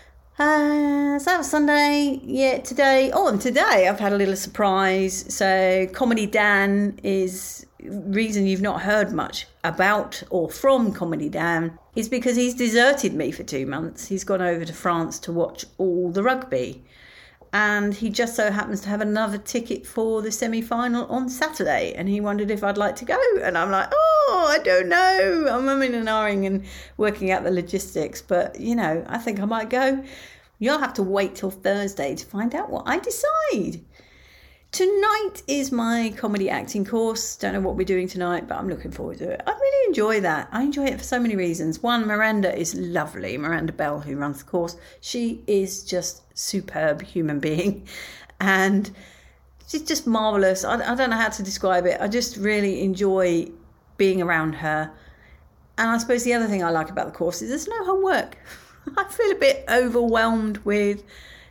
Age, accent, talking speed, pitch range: 40-59, British, 185 wpm, 190-250 Hz